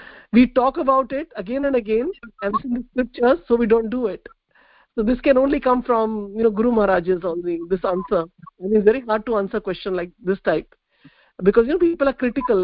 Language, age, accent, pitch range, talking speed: English, 50-69, Indian, 200-255 Hz, 225 wpm